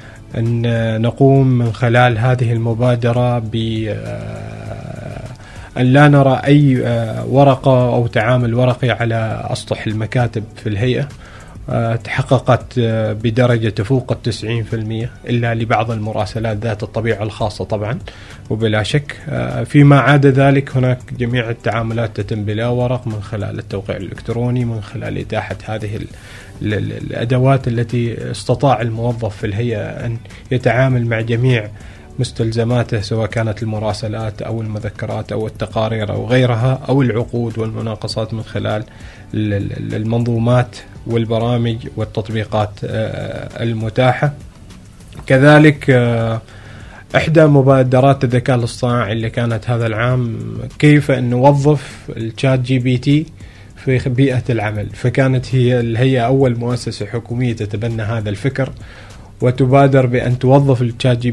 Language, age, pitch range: Arabic, 30-49, 110-125 Hz